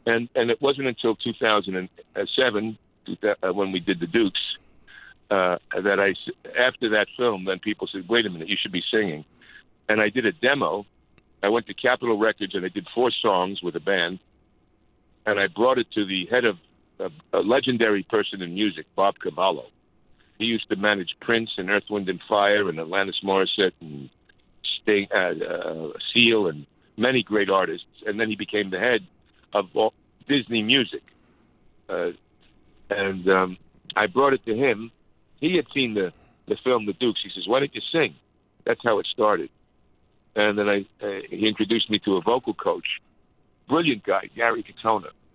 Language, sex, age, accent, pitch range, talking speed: Finnish, male, 60-79, American, 95-115 Hz, 175 wpm